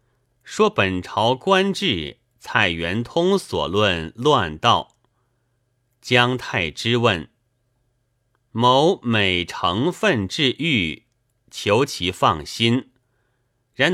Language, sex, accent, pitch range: Chinese, male, native, 100-125 Hz